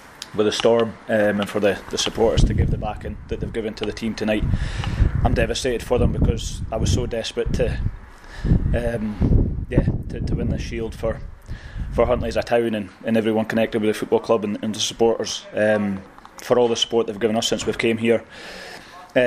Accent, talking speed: British, 210 wpm